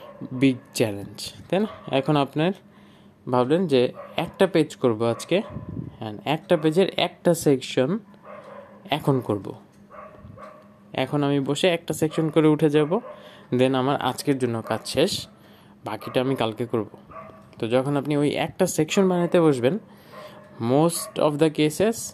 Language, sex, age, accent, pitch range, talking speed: Bengali, male, 20-39, native, 120-160 Hz, 95 wpm